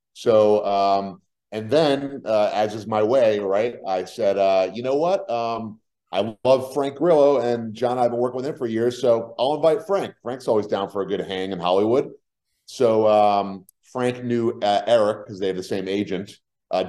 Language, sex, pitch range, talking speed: English, male, 100-120 Hz, 205 wpm